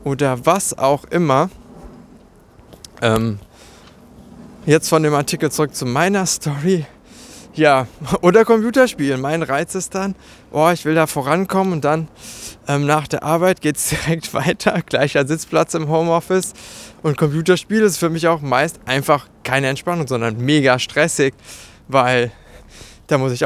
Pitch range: 125-170 Hz